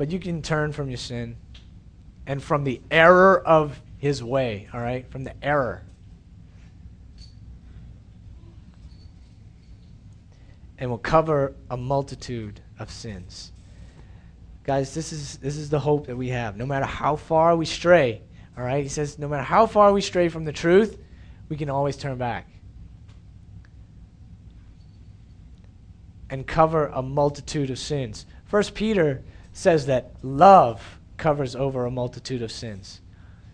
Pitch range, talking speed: 95-150 Hz, 140 wpm